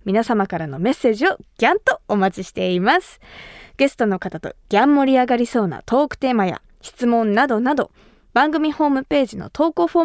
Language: Japanese